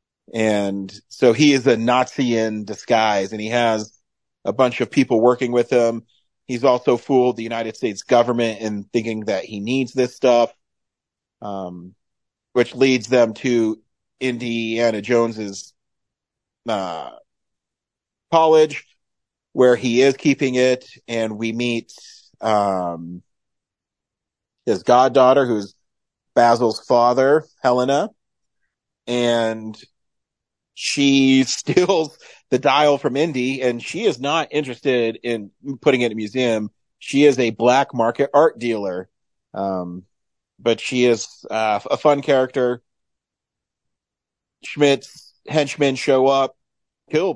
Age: 40-59